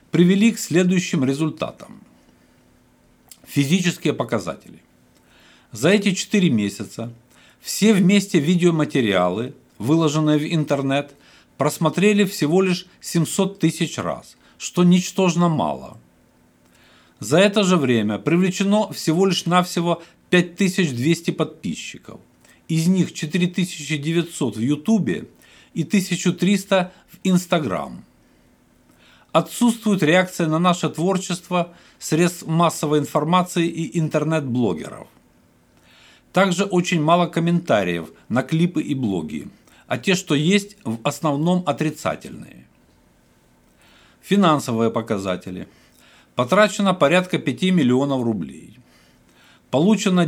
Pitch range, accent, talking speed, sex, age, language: 125-180 Hz, native, 95 wpm, male, 50-69, Russian